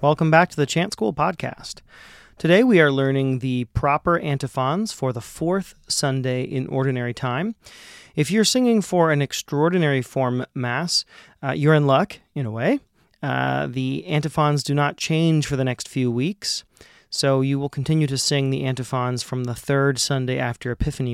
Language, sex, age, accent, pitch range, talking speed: English, male, 30-49, American, 130-155 Hz, 175 wpm